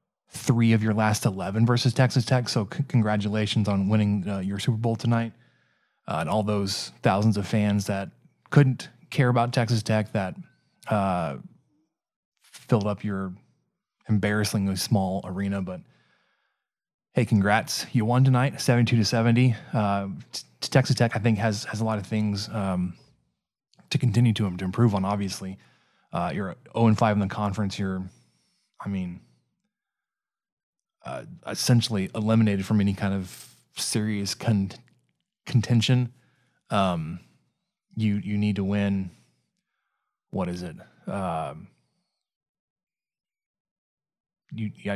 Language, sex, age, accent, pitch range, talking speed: English, male, 20-39, American, 100-115 Hz, 135 wpm